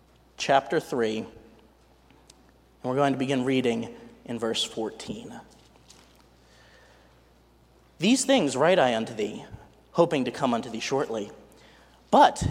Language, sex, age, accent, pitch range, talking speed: English, male, 30-49, American, 130-185 Hz, 115 wpm